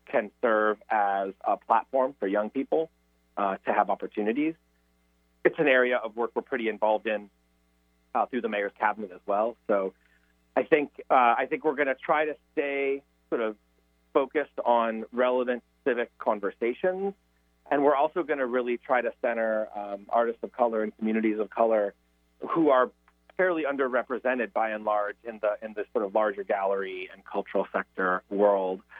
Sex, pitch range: male, 95-130 Hz